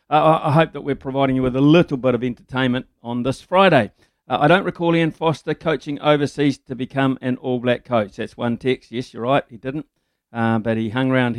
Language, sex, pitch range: English, male, 120-135 Hz